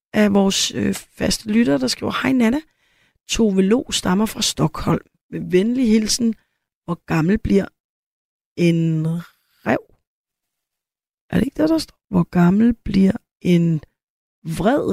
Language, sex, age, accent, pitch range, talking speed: Danish, female, 30-49, native, 175-230 Hz, 135 wpm